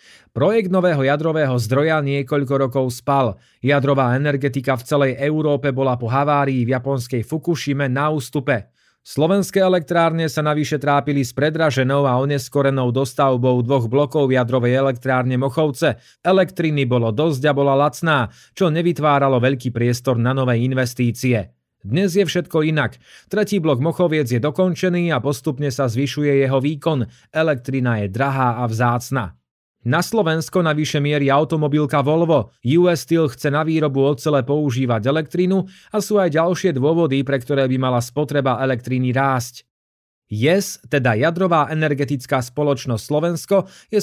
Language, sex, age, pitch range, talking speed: Slovak, male, 30-49, 130-155 Hz, 135 wpm